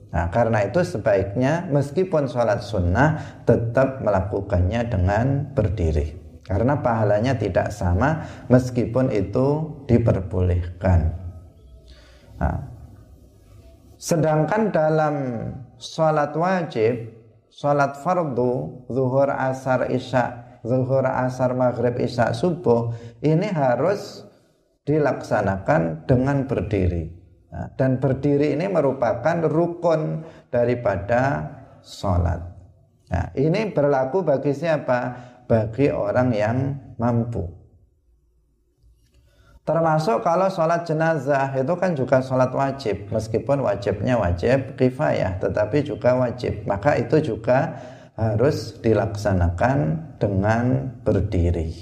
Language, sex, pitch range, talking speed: Indonesian, male, 105-140 Hz, 90 wpm